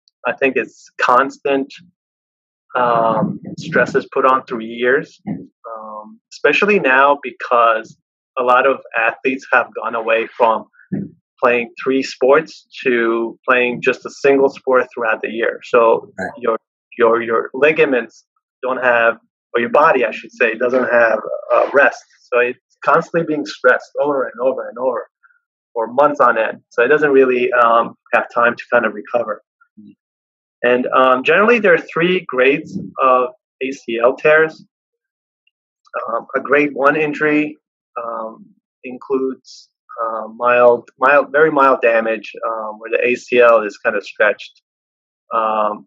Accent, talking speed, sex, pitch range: American, 145 wpm, male, 115-170 Hz